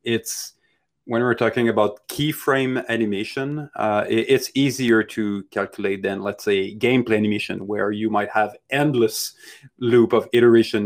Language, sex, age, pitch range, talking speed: English, male, 30-49, 105-120 Hz, 140 wpm